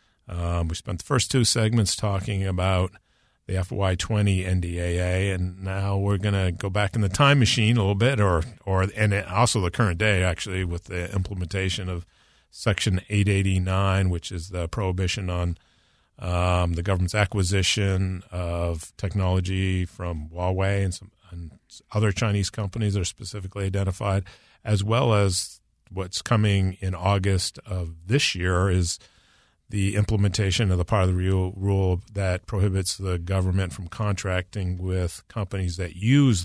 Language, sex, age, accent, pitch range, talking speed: English, male, 50-69, American, 90-105 Hz, 155 wpm